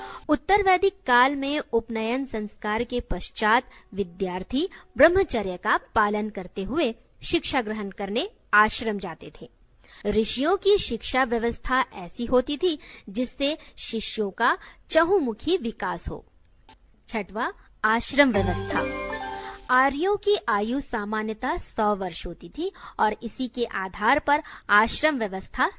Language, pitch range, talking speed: Hindi, 205-280 Hz, 120 wpm